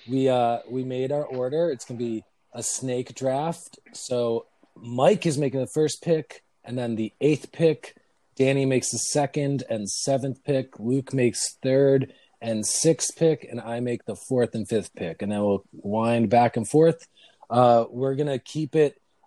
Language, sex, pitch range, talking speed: English, male, 115-155 Hz, 185 wpm